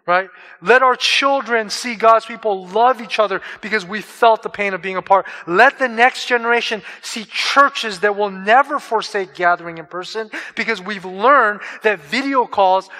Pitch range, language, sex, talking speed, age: 180-230 Hz, English, male, 170 wpm, 30-49